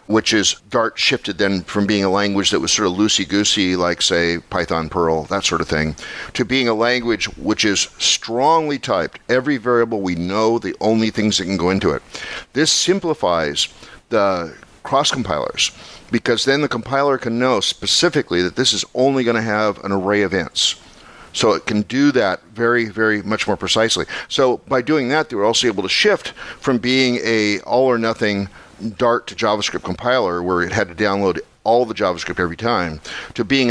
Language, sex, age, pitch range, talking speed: English, male, 50-69, 95-125 Hz, 185 wpm